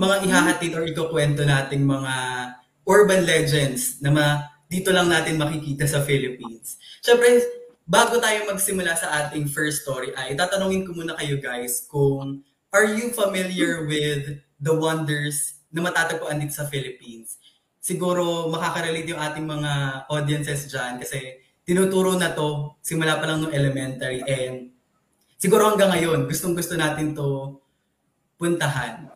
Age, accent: 20-39, native